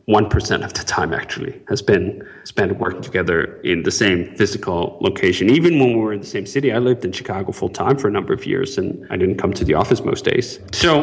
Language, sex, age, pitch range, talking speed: English, male, 30-49, 100-125 Hz, 230 wpm